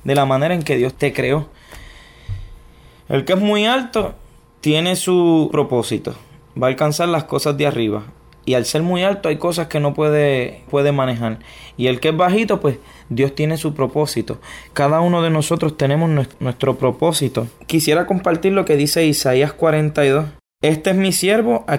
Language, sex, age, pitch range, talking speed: Spanish, male, 20-39, 130-165 Hz, 175 wpm